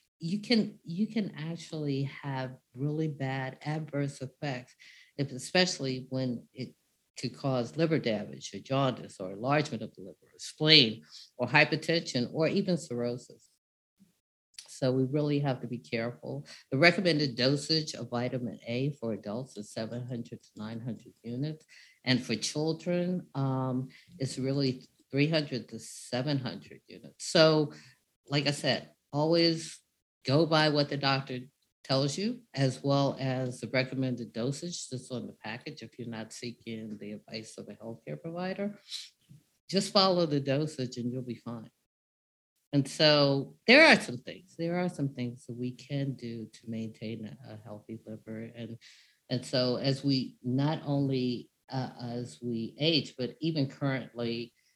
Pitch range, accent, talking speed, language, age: 120-150 Hz, American, 150 wpm, English, 50-69